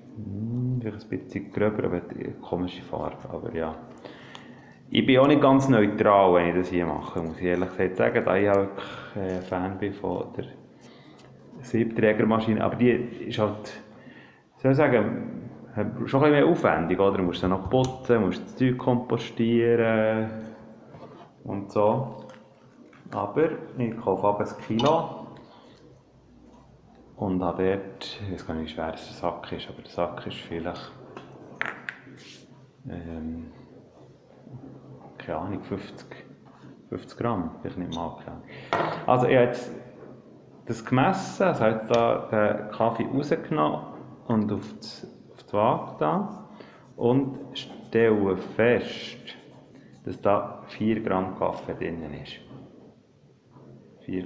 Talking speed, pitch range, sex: 135 wpm, 90-120 Hz, male